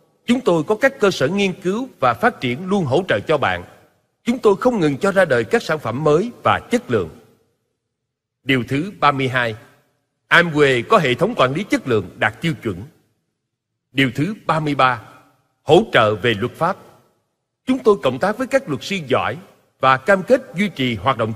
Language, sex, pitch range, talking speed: Vietnamese, male, 125-180 Hz, 190 wpm